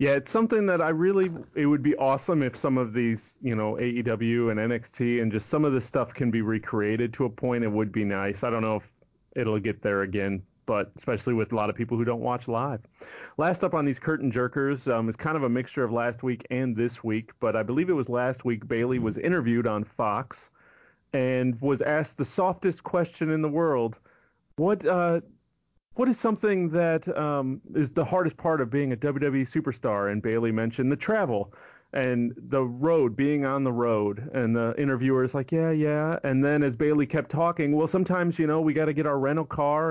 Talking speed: 220 wpm